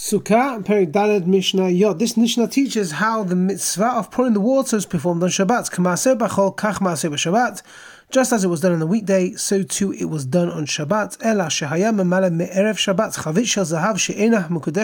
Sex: male